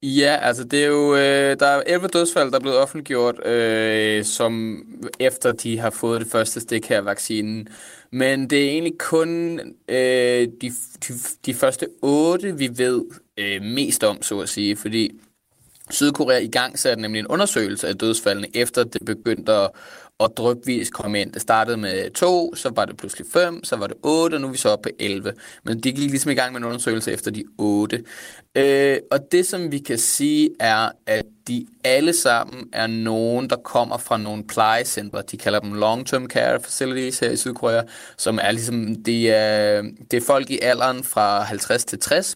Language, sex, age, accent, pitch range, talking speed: Danish, male, 20-39, native, 110-140 Hz, 195 wpm